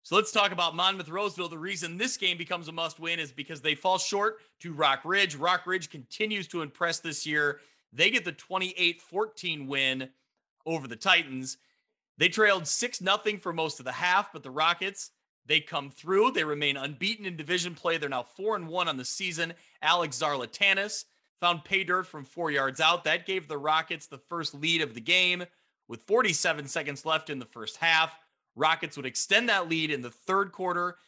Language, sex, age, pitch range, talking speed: English, male, 30-49, 150-185 Hz, 190 wpm